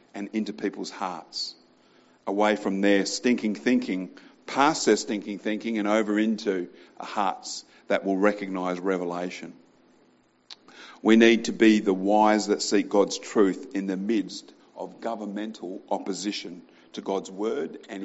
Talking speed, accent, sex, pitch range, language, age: 135 wpm, Australian, male, 95-110 Hz, English, 50-69